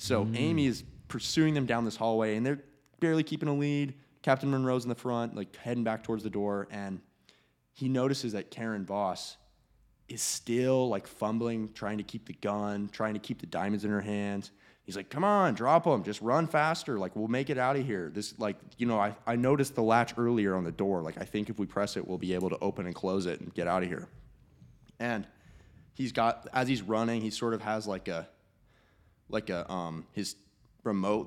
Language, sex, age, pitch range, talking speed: English, male, 20-39, 100-125 Hz, 220 wpm